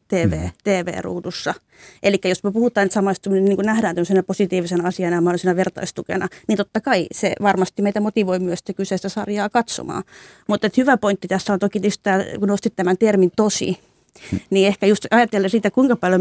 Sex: female